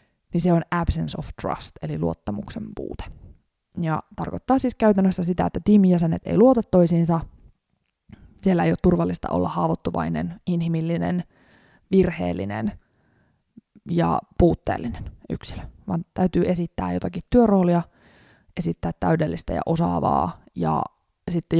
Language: Finnish